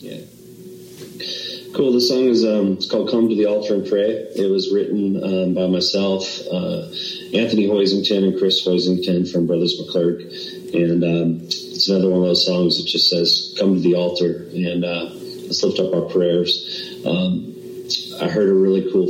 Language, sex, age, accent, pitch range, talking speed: English, male, 30-49, American, 90-100 Hz, 180 wpm